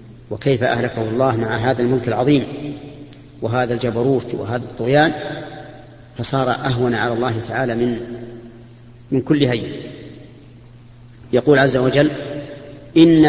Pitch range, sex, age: 120-135 Hz, male, 40-59